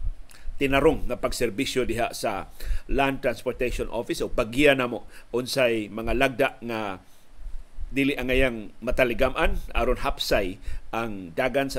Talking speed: 120 wpm